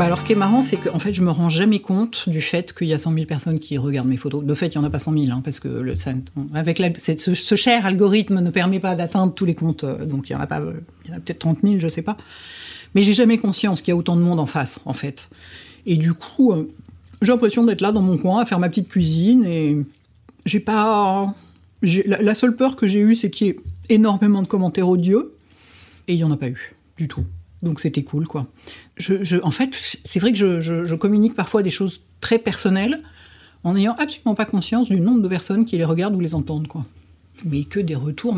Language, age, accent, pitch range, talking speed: French, 50-69, French, 160-210 Hz, 260 wpm